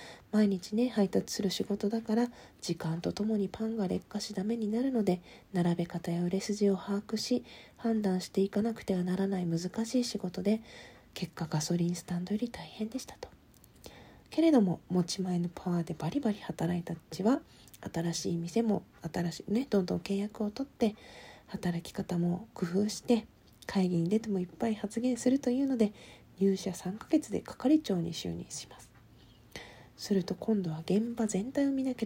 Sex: female